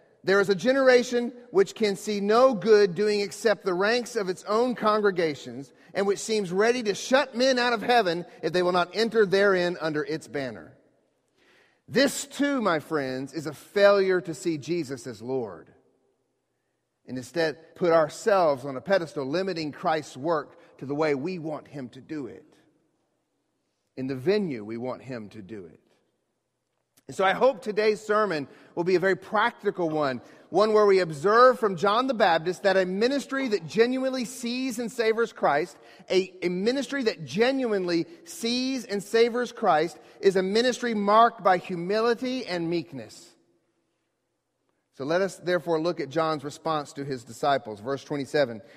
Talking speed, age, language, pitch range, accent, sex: 165 wpm, 40-59, English, 150-220 Hz, American, male